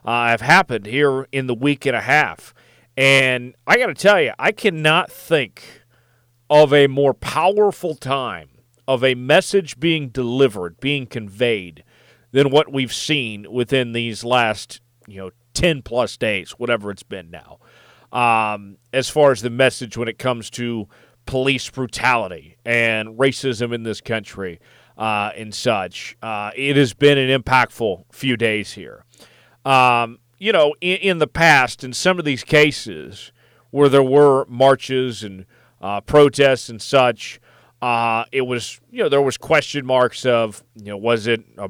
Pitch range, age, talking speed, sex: 115-140 Hz, 40-59, 160 wpm, male